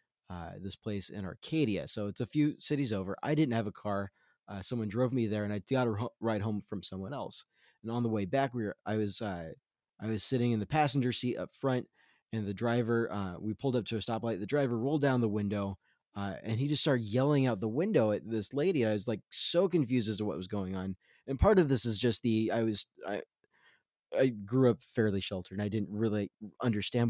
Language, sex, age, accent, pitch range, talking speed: English, male, 20-39, American, 105-145 Hz, 245 wpm